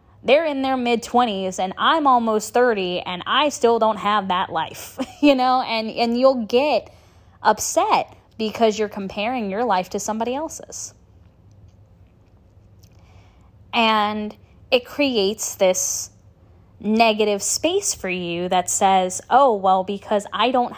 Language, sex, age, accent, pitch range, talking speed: English, female, 10-29, American, 165-225 Hz, 130 wpm